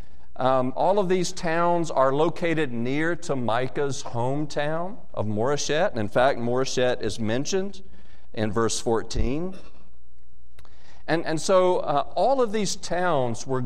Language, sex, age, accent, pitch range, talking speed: English, male, 40-59, American, 110-155 Hz, 130 wpm